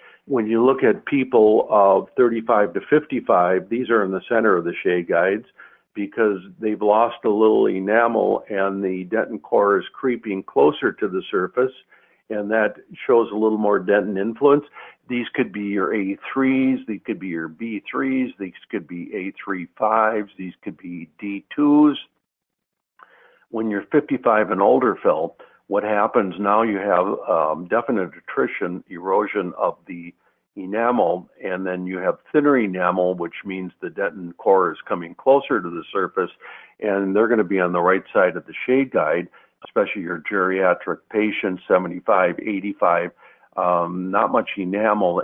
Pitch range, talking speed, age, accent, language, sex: 95-115 Hz, 155 wpm, 60-79, American, English, male